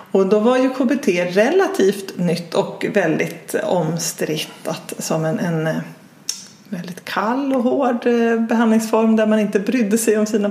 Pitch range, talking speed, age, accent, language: 195-230 Hz, 145 wpm, 30-49, native, Swedish